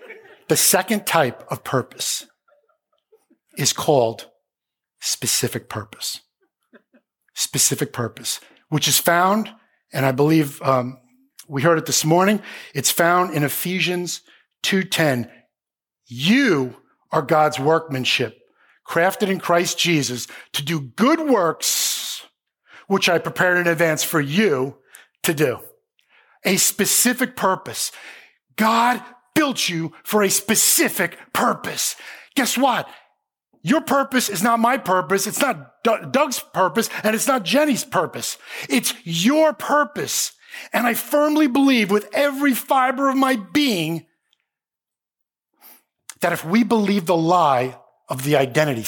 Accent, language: American, English